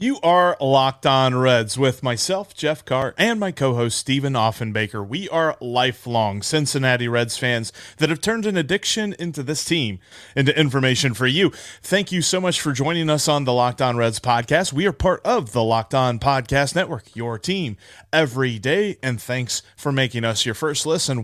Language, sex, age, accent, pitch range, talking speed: English, male, 30-49, American, 125-185 Hz, 185 wpm